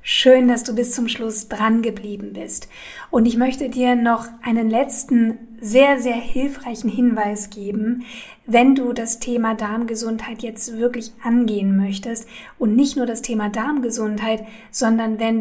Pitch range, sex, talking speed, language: 220-245 Hz, female, 150 wpm, German